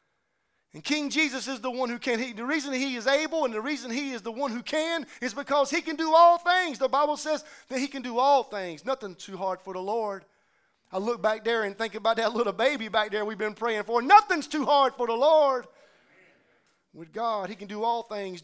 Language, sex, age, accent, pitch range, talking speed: English, male, 30-49, American, 230-320 Hz, 240 wpm